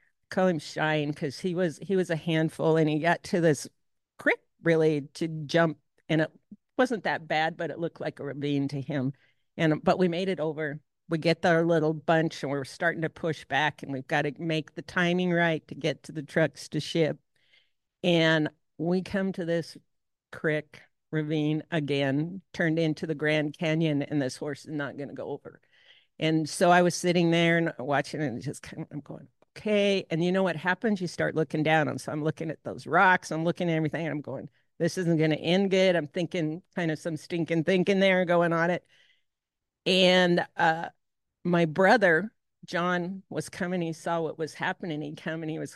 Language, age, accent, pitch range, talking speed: English, 50-69, American, 155-180 Hz, 205 wpm